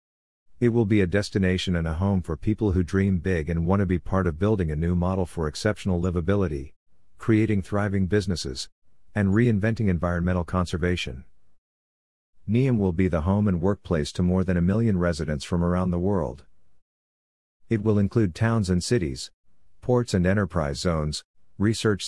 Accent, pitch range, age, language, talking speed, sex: American, 85-100 Hz, 50-69, English, 165 wpm, male